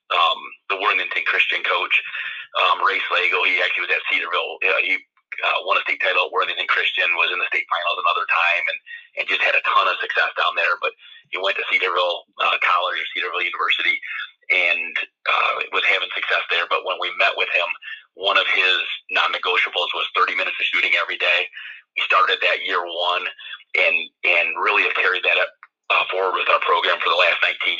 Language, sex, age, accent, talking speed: English, male, 30-49, American, 205 wpm